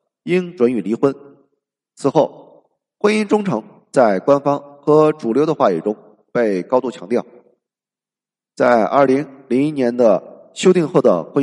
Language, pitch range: Chinese, 130-165 Hz